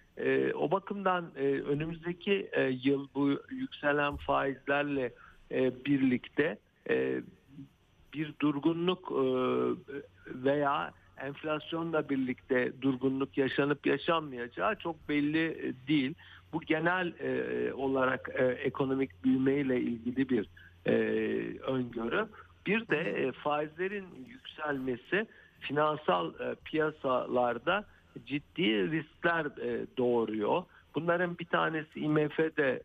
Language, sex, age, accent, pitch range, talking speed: Turkish, male, 60-79, native, 125-150 Hz, 75 wpm